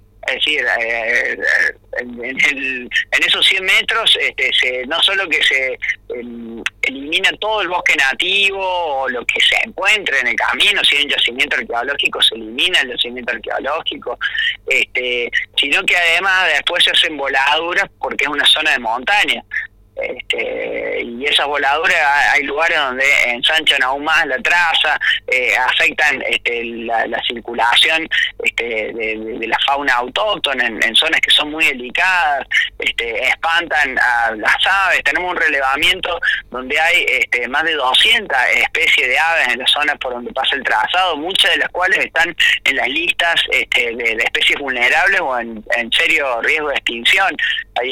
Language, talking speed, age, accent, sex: Spanish, 155 wpm, 30-49, Argentinian, male